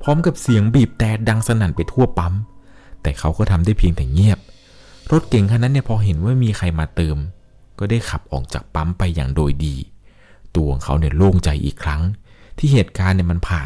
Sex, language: male, Thai